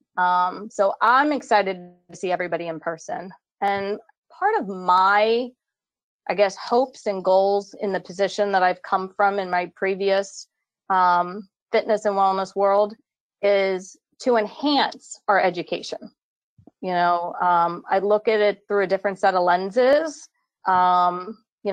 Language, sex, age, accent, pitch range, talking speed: English, female, 30-49, American, 185-220 Hz, 145 wpm